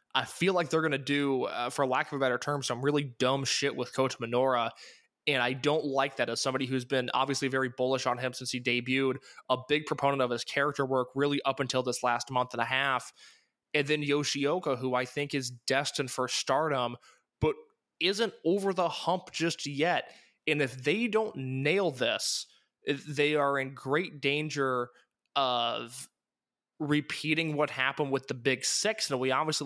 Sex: male